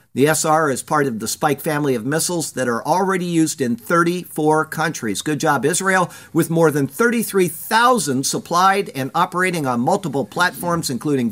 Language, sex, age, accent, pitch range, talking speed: English, male, 50-69, American, 130-175 Hz, 165 wpm